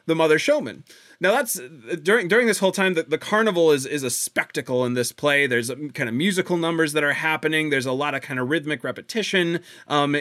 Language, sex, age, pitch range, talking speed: English, male, 30-49, 130-165 Hz, 225 wpm